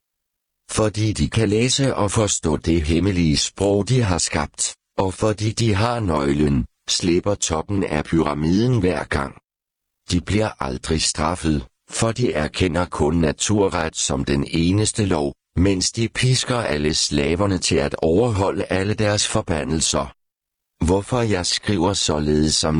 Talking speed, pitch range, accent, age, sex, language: 135 wpm, 75-105 Hz, native, 60-79, male, Danish